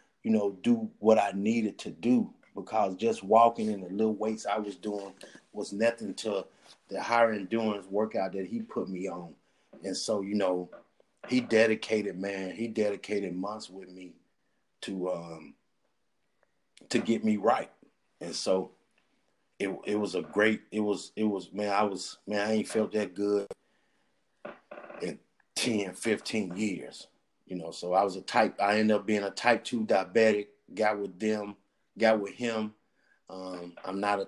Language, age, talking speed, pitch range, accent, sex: English, 30-49, 170 wpm, 95-110 Hz, American, male